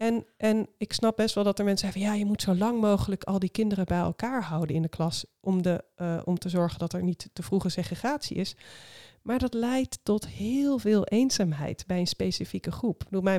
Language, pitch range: Dutch, 175-220 Hz